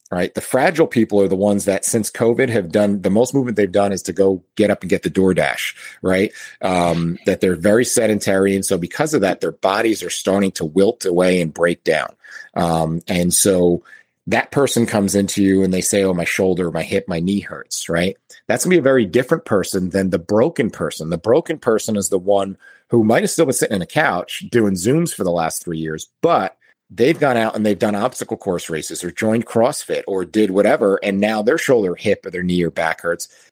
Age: 40-59